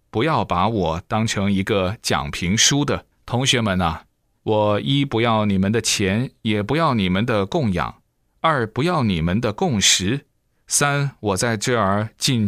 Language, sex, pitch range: Chinese, male, 95-125 Hz